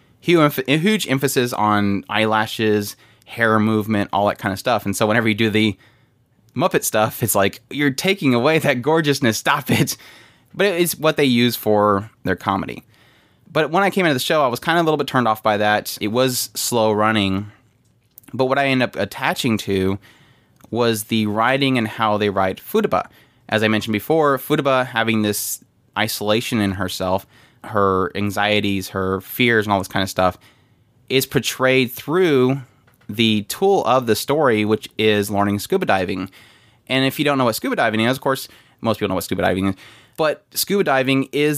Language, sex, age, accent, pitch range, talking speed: English, male, 20-39, American, 100-130 Hz, 185 wpm